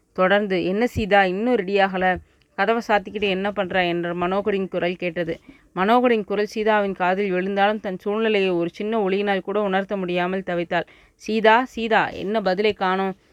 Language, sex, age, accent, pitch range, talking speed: Tamil, female, 20-39, native, 180-210 Hz, 145 wpm